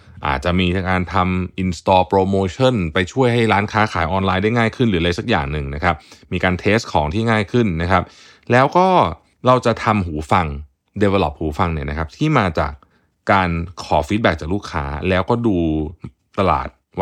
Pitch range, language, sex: 85-110 Hz, Thai, male